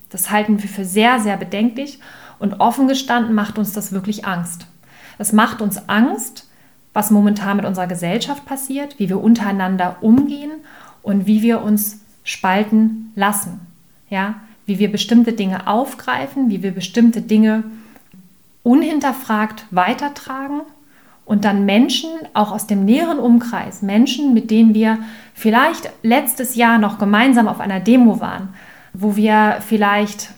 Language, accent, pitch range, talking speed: German, German, 200-245 Hz, 140 wpm